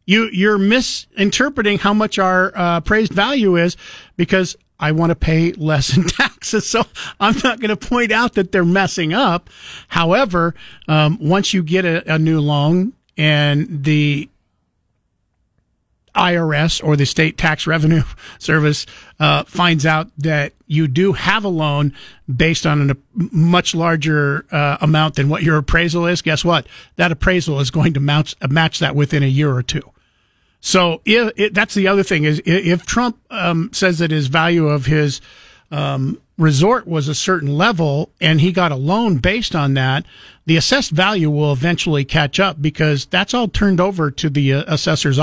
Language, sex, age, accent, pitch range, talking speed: English, male, 50-69, American, 145-185 Hz, 170 wpm